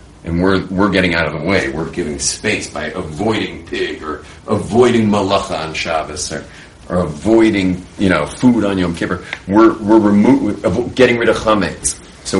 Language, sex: English, male